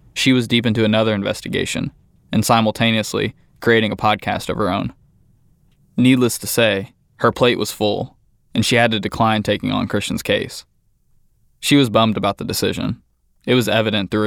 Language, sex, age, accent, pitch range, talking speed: English, male, 20-39, American, 105-115 Hz, 170 wpm